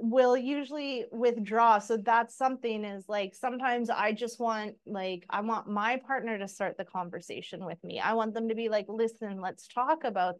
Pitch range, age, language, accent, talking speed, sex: 200-245 Hz, 30-49, English, American, 190 wpm, female